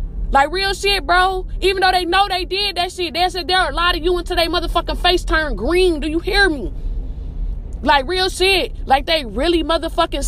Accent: American